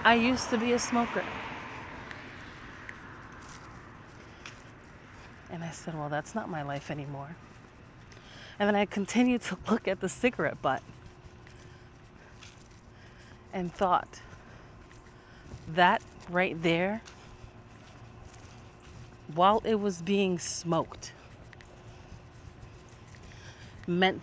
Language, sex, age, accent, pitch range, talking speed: English, female, 30-49, American, 115-185 Hz, 90 wpm